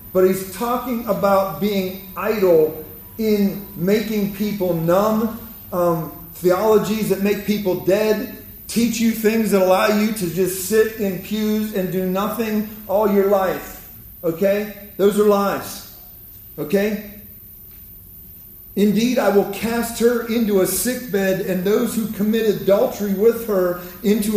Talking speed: 135 wpm